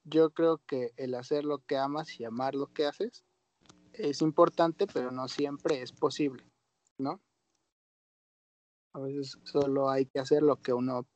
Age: 30-49